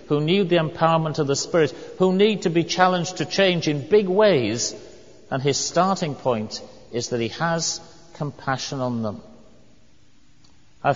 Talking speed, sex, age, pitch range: 160 wpm, male, 50-69, 115-150 Hz